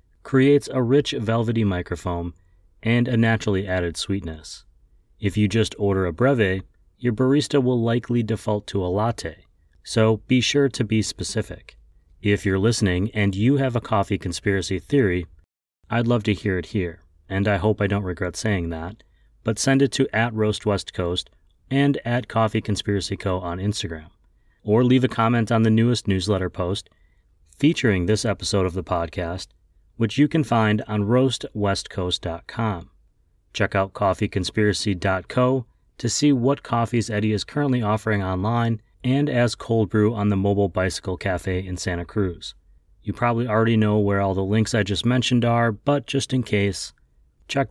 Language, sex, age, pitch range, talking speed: English, male, 30-49, 90-115 Hz, 165 wpm